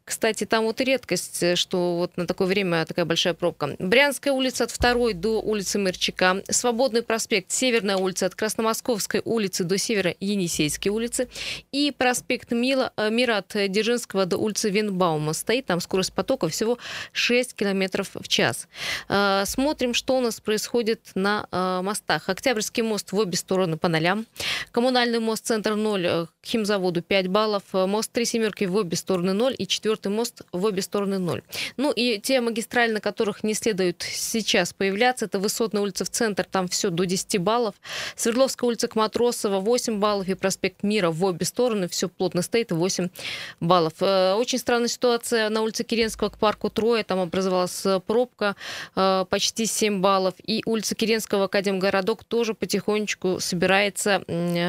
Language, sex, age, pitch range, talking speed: Russian, female, 20-39, 185-230 Hz, 155 wpm